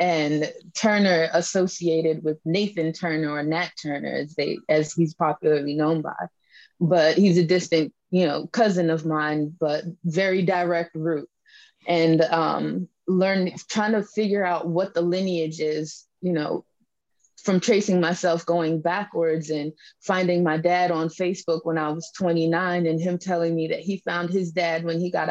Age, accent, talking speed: 20-39, American, 165 wpm